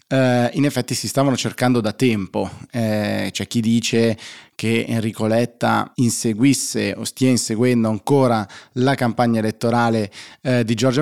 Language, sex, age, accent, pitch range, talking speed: Italian, male, 20-39, native, 110-130 Hz, 130 wpm